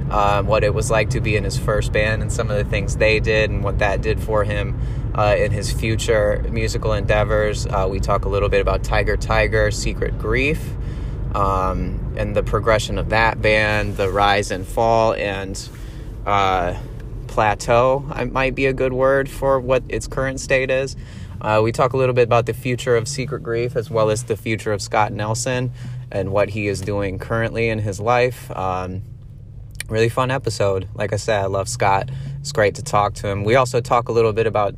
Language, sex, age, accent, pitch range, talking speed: English, male, 20-39, American, 105-125 Hz, 205 wpm